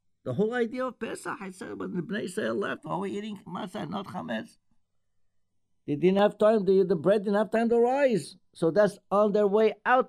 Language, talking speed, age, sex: English, 225 wpm, 60-79, male